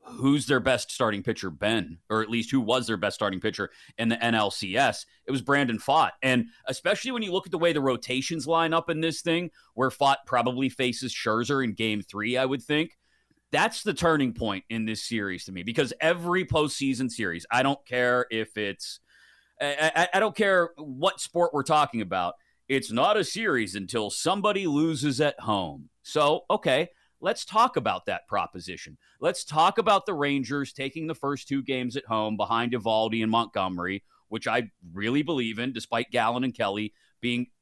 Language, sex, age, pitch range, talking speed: English, male, 30-49, 110-145 Hz, 185 wpm